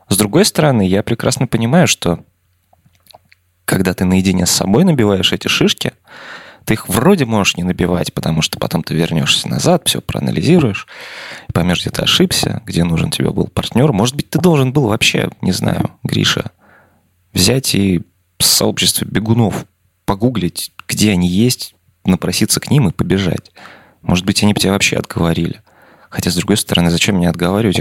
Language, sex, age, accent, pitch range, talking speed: Russian, male, 20-39, native, 90-110 Hz, 160 wpm